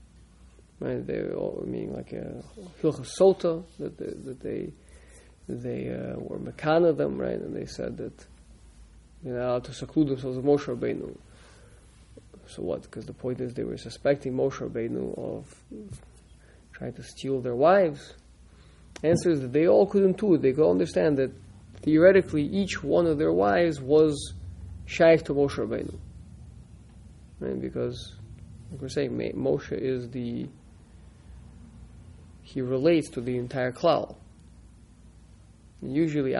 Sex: male